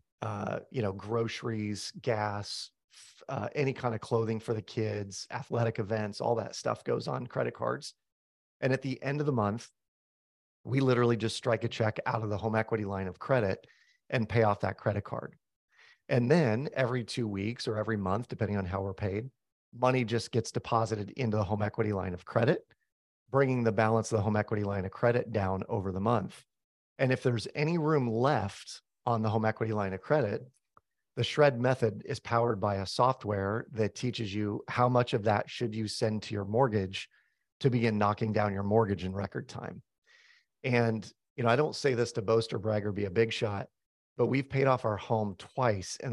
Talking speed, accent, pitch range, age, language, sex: 200 wpm, American, 105-125 Hz, 40-59, English, male